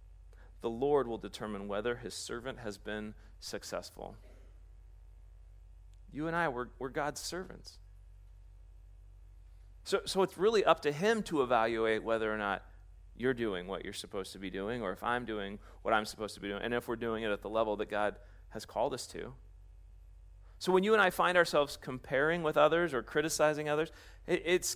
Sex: male